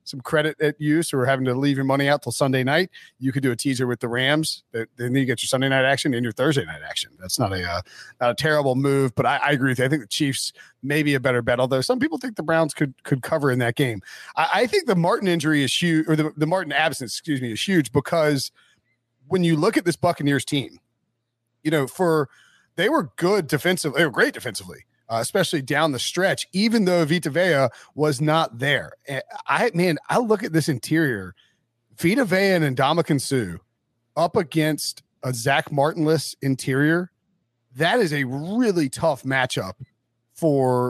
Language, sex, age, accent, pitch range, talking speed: English, male, 40-59, American, 130-165 Hz, 210 wpm